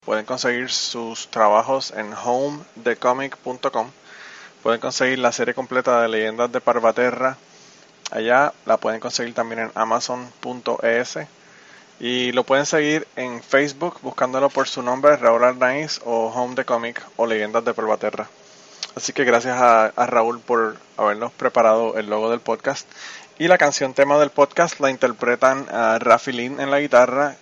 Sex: male